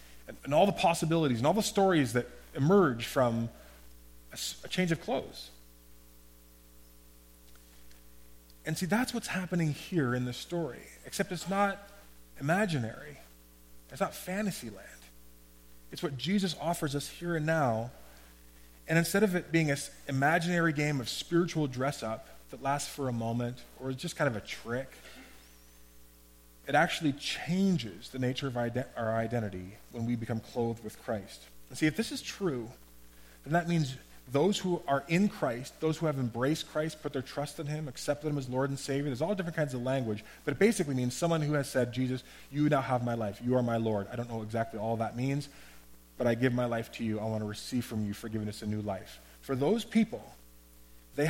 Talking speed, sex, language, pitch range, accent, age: 185 wpm, male, English, 100-155 Hz, American, 30-49